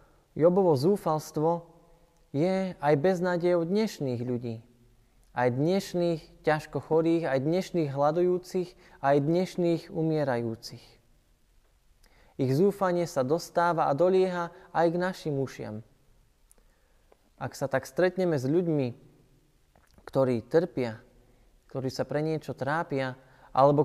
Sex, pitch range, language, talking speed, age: male, 130-165 Hz, Slovak, 105 wpm, 20-39